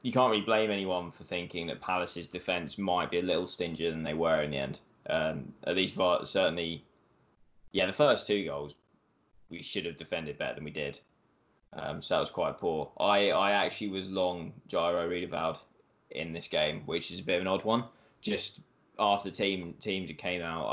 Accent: British